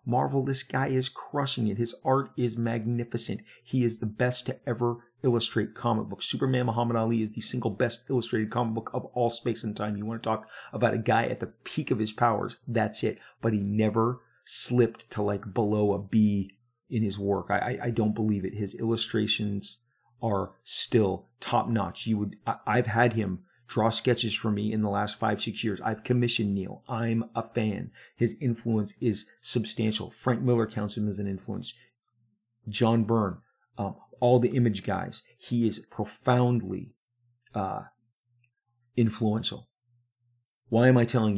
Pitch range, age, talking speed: 105-120 Hz, 30-49, 175 wpm